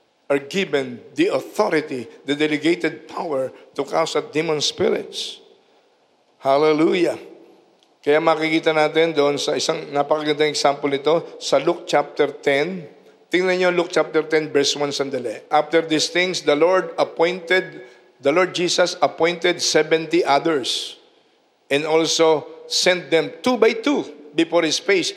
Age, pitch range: 50-69, 150-225 Hz